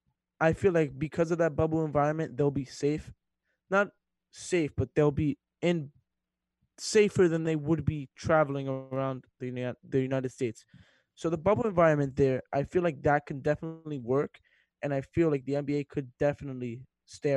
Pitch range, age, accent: 125-160 Hz, 20-39, American